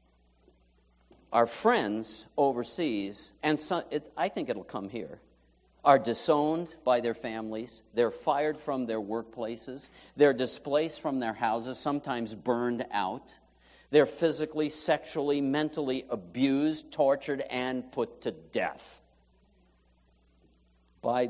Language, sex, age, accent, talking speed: English, male, 60-79, American, 105 wpm